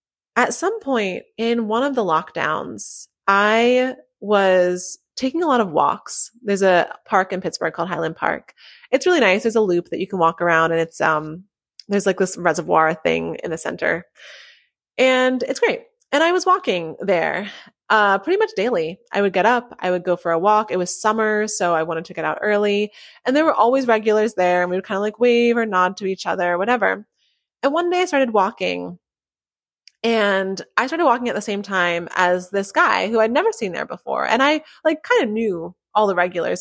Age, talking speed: 20-39, 210 wpm